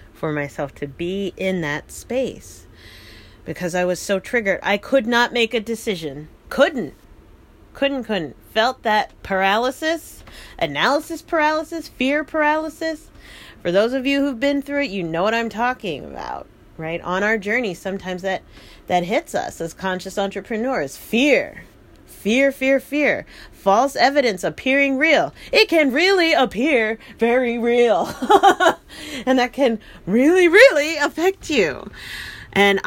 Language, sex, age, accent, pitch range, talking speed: English, female, 40-59, American, 165-270 Hz, 140 wpm